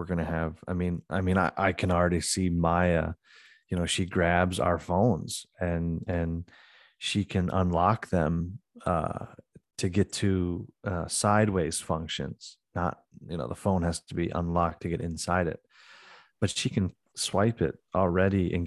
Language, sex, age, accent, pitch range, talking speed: English, male, 30-49, American, 85-105 Hz, 170 wpm